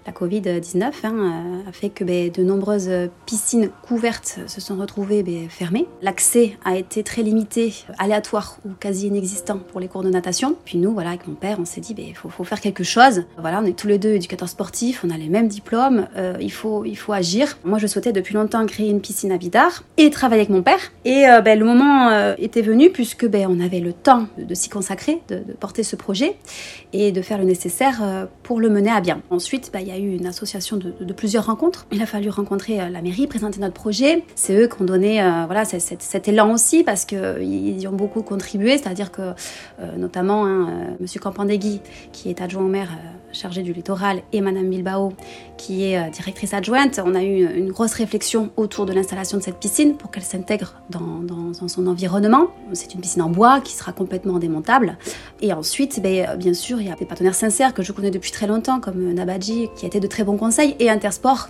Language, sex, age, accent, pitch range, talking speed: French, female, 30-49, French, 185-220 Hz, 225 wpm